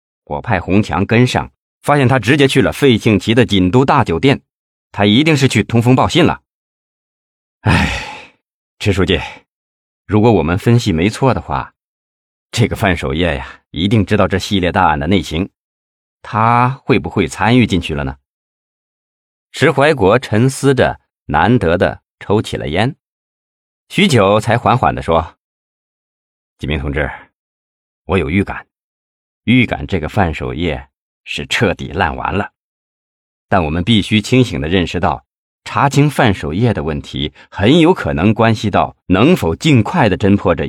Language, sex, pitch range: Chinese, male, 75-115 Hz